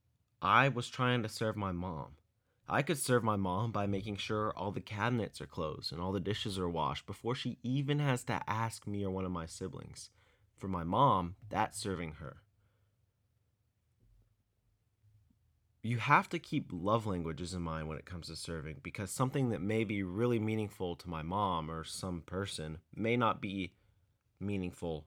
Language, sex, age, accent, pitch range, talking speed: English, male, 30-49, American, 90-115 Hz, 175 wpm